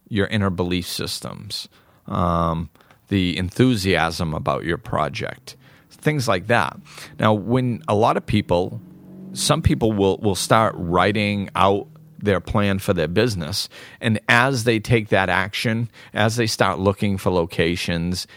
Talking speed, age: 140 wpm, 40-59